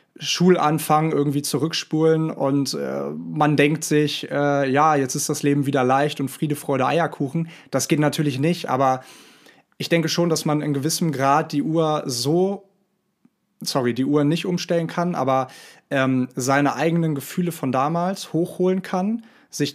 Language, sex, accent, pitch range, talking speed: German, male, German, 135-175 Hz, 160 wpm